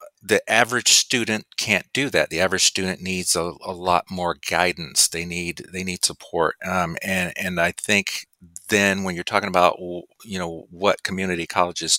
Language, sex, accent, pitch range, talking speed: English, male, American, 90-100 Hz, 175 wpm